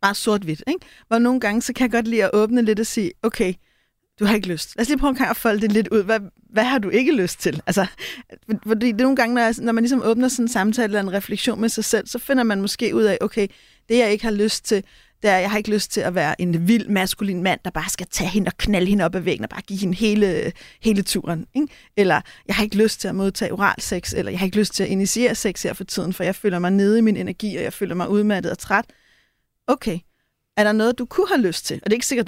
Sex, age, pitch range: female, 30-49, 200-235 Hz